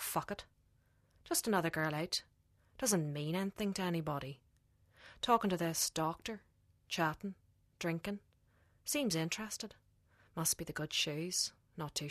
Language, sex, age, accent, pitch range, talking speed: English, female, 30-49, Irish, 125-175 Hz, 130 wpm